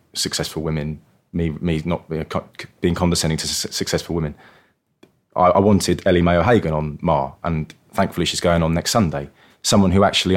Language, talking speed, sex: English, 160 wpm, male